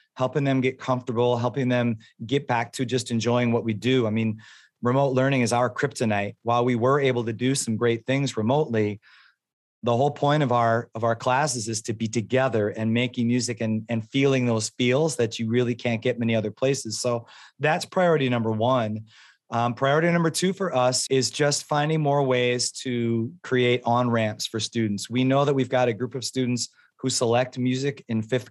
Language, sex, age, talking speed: English, male, 30-49, 195 wpm